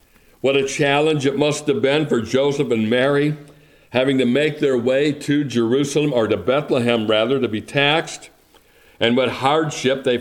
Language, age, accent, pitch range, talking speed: English, 60-79, American, 125-150 Hz, 170 wpm